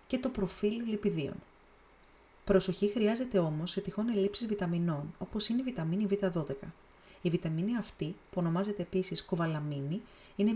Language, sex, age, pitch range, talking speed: Greek, female, 30-49, 170-205 Hz, 135 wpm